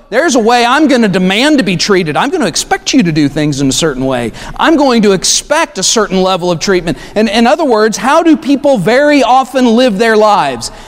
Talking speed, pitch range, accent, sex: 235 wpm, 140-215 Hz, American, male